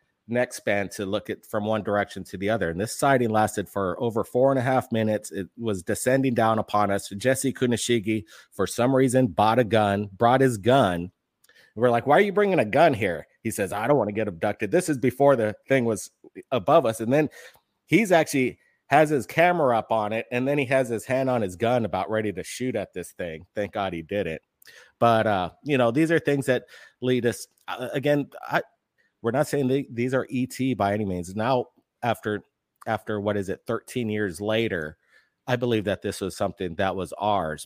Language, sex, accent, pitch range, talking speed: English, male, American, 100-125 Hz, 220 wpm